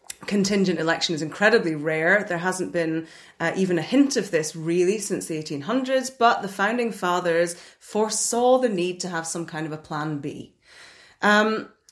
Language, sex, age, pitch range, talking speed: English, female, 30-49, 165-220 Hz, 170 wpm